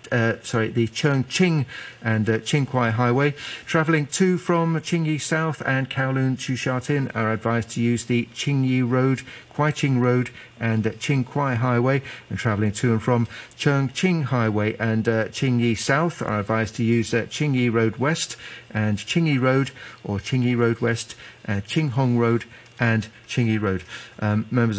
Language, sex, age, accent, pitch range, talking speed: English, male, 50-69, British, 115-135 Hz, 155 wpm